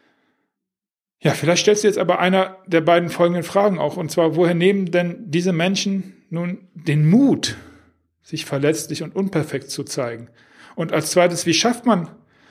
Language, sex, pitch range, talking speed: German, male, 150-195 Hz, 165 wpm